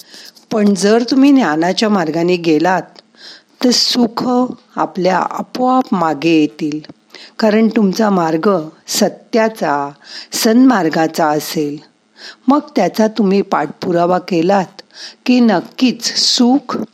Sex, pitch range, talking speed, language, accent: female, 165-235 Hz, 95 wpm, Marathi, native